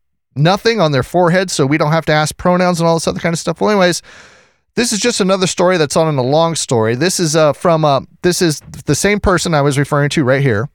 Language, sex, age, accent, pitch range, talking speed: English, male, 30-49, American, 125-165 Hz, 260 wpm